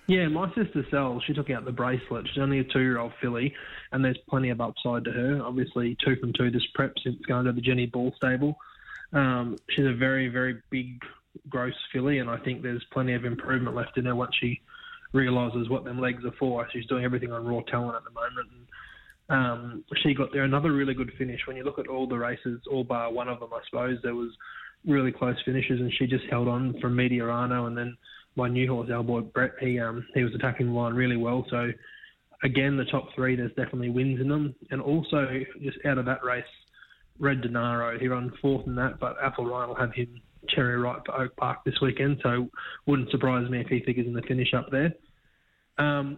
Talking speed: 220 wpm